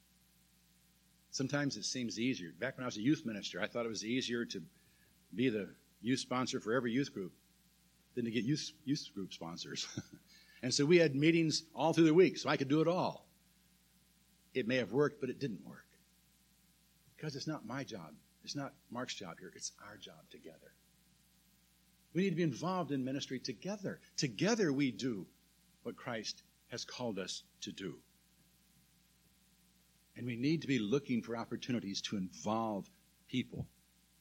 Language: English